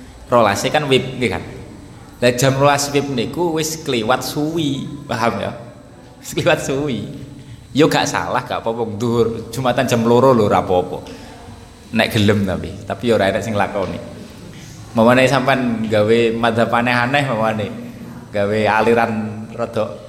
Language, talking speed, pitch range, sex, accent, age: Indonesian, 150 wpm, 110-145 Hz, male, native, 20-39